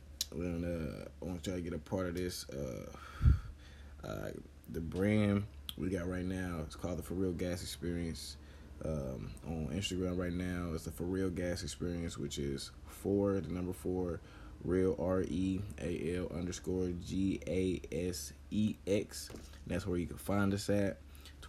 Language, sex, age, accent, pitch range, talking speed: English, male, 20-39, American, 75-95 Hz, 155 wpm